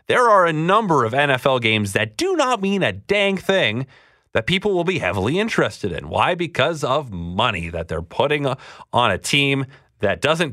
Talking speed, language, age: 190 wpm, English, 30-49